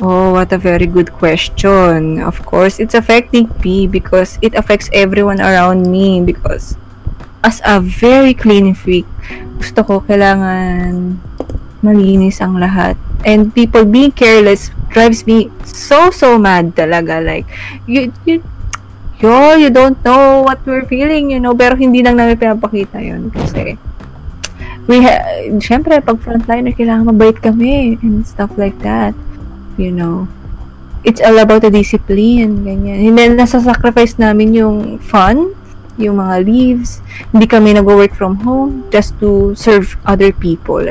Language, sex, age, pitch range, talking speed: Filipino, female, 20-39, 180-235 Hz, 140 wpm